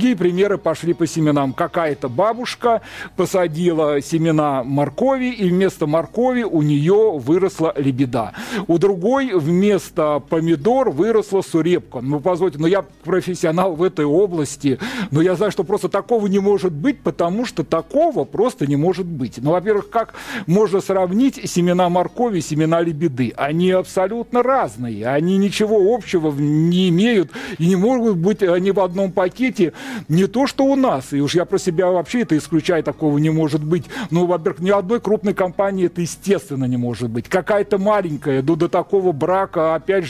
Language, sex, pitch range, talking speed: Russian, male, 160-205 Hz, 165 wpm